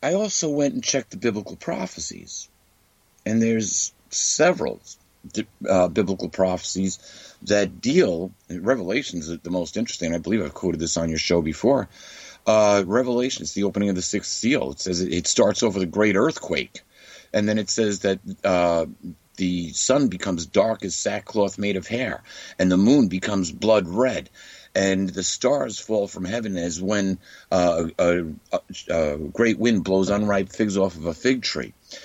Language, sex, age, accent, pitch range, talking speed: English, male, 50-69, American, 95-115 Hz, 165 wpm